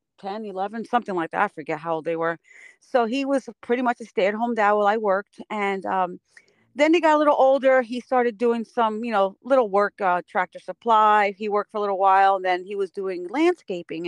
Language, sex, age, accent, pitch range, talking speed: English, female, 40-59, American, 190-240 Hz, 225 wpm